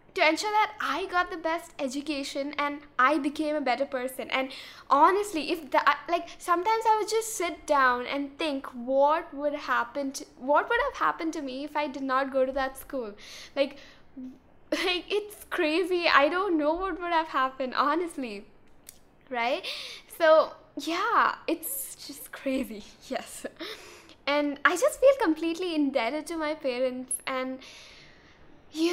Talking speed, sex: 155 wpm, female